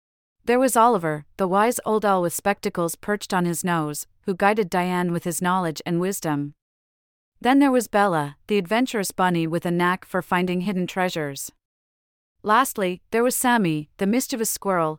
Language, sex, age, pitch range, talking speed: English, female, 40-59, 170-210 Hz, 170 wpm